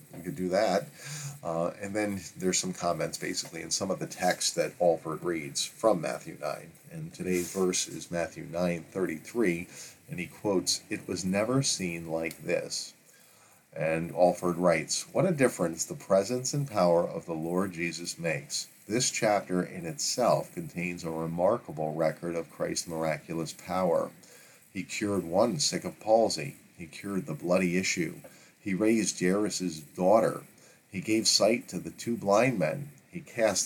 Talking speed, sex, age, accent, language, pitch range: 160 wpm, male, 40-59, American, English, 90-130 Hz